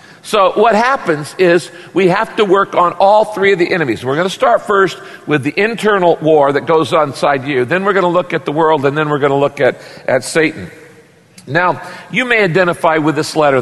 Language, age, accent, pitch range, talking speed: English, 50-69, American, 150-190 Hz, 230 wpm